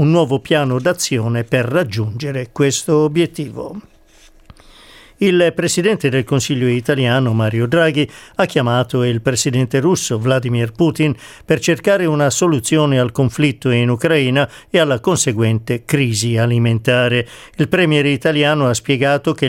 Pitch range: 125-155 Hz